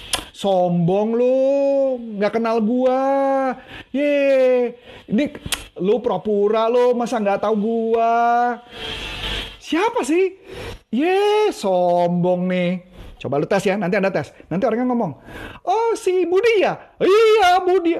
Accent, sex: native, male